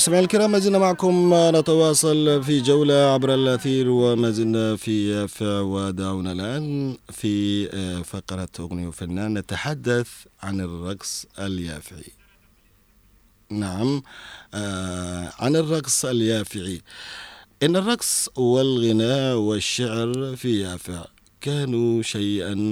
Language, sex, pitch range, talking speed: Arabic, male, 95-125 Hz, 90 wpm